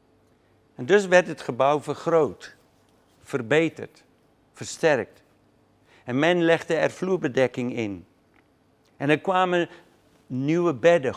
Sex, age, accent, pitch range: male, 60-79, Dutch, 125-160 Hz